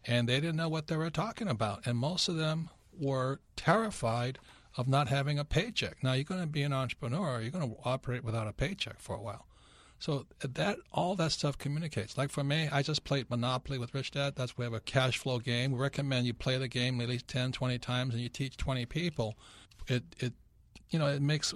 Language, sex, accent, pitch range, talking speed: English, male, American, 120-145 Hz, 230 wpm